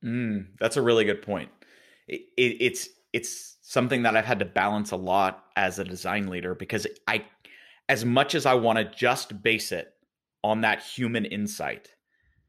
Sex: male